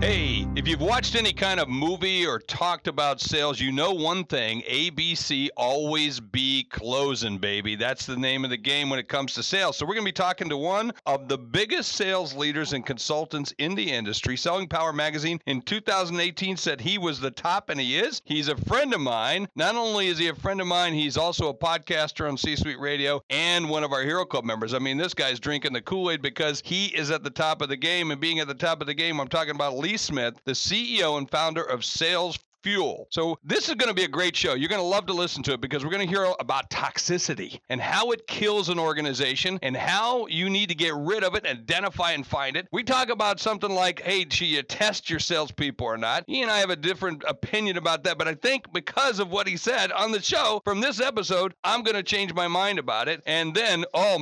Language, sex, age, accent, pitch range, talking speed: English, male, 50-69, American, 140-185 Hz, 240 wpm